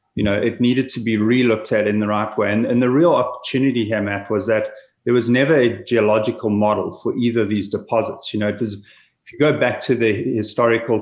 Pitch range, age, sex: 105-120 Hz, 30-49, male